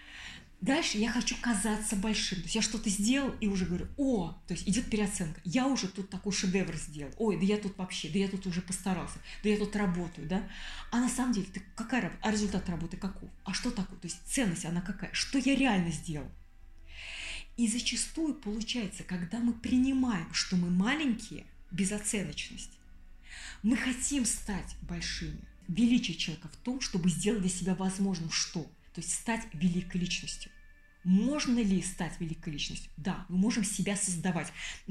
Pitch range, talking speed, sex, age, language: 175-220 Hz, 175 wpm, female, 20-39, Russian